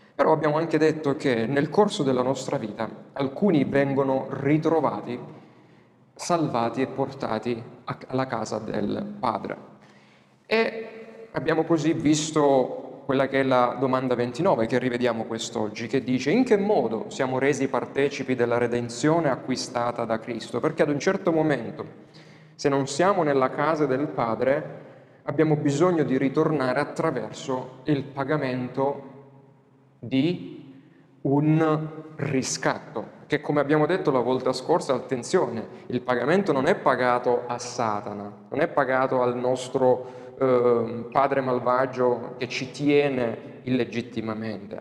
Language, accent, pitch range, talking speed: Italian, native, 120-145 Hz, 125 wpm